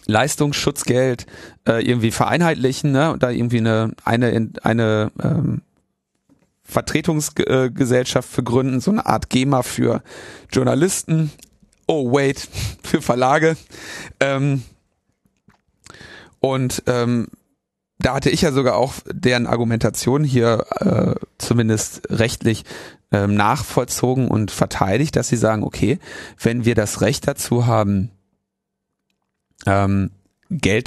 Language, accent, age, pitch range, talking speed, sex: German, German, 40-59, 110-135 Hz, 105 wpm, male